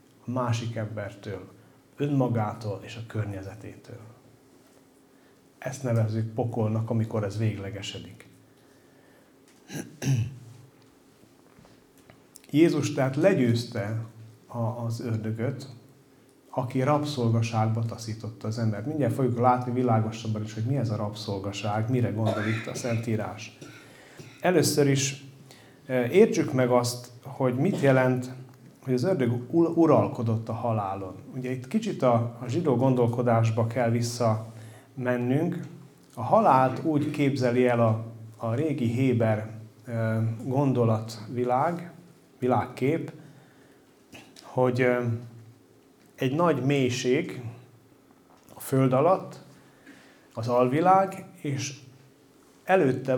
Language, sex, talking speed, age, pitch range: Hungarian, male, 90 wpm, 40-59, 115-135 Hz